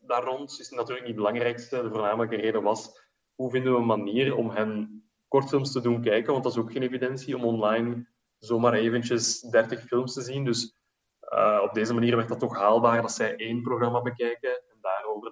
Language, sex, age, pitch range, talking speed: Dutch, male, 20-39, 110-125 Hz, 205 wpm